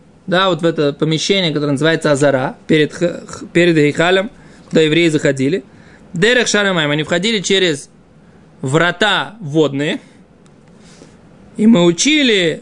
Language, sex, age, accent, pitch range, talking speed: Russian, male, 20-39, native, 170-230 Hz, 115 wpm